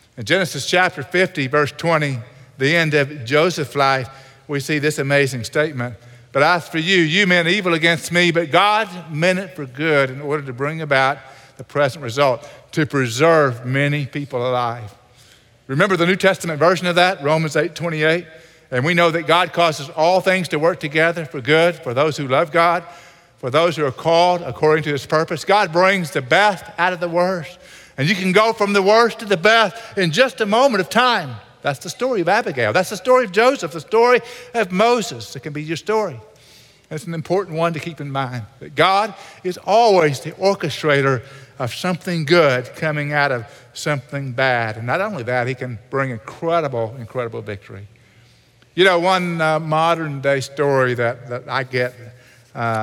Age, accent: 50-69, American